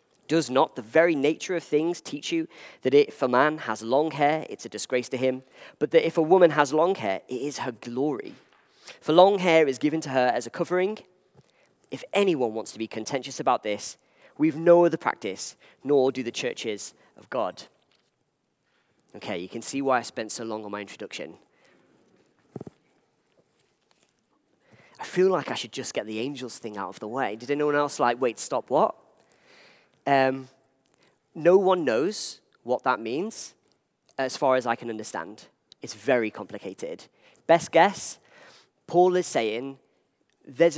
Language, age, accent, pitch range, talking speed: English, 30-49, British, 120-160 Hz, 170 wpm